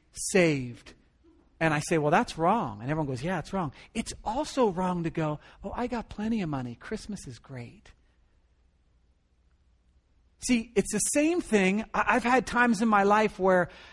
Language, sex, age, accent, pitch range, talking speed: English, male, 40-59, American, 150-235 Hz, 170 wpm